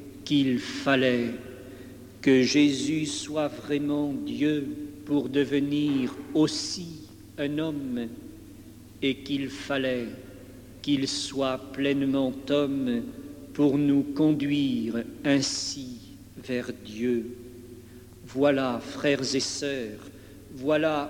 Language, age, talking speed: French, 60-79, 85 wpm